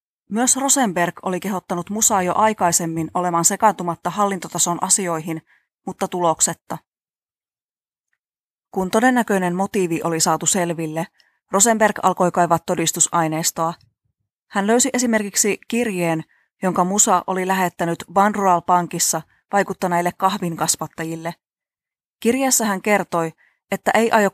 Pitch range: 170-200 Hz